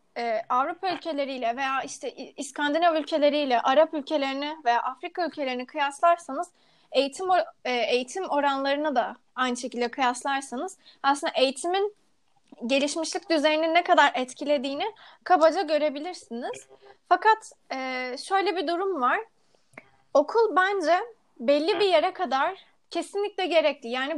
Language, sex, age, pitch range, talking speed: Turkish, female, 30-49, 265-350 Hz, 110 wpm